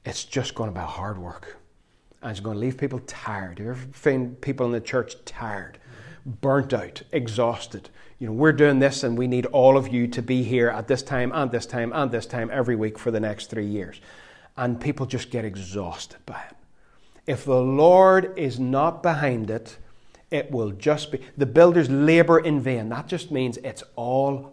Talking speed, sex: 205 wpm, male